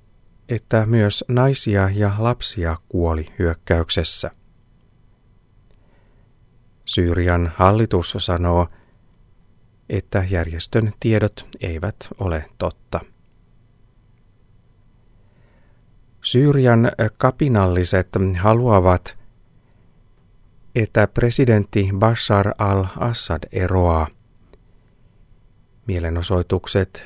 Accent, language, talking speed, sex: native, Finnish, 55 wpm, male